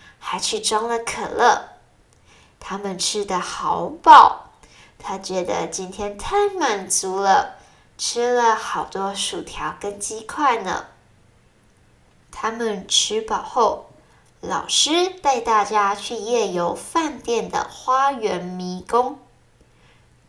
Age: 20-39